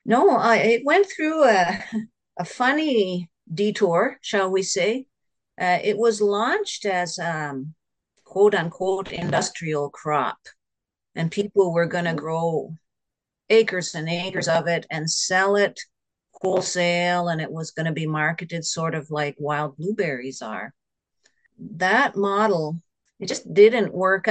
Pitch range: 165-210 Hz